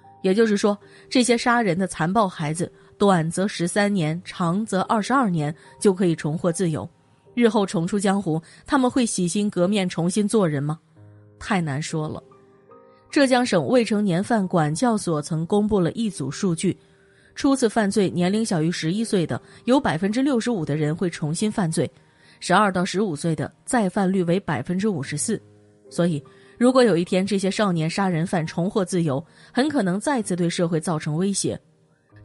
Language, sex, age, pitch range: Chinese, female, 20-39, 160-210 Hz